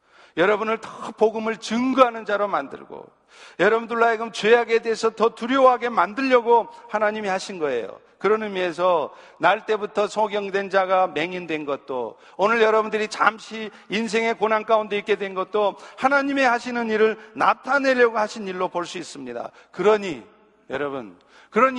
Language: Korean